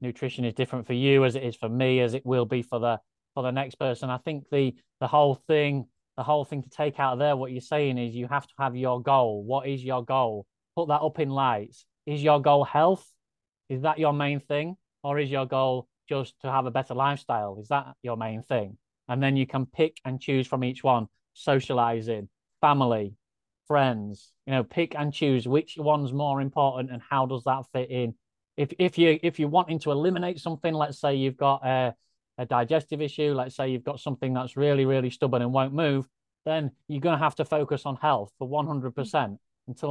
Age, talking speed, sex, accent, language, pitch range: 30-49, 220 wpm, male, British, English, 120-145 Hz